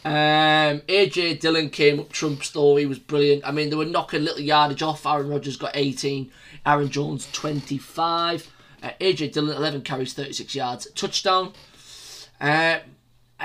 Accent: British